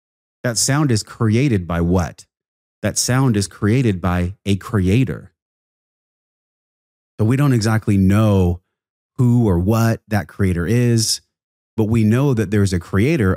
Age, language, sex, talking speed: 30-49, English, male, 140 wpm